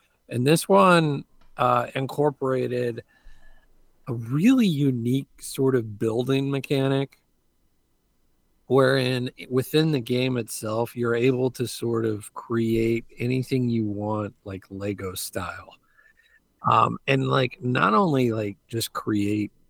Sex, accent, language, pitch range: male, American, English, 120-145 Hz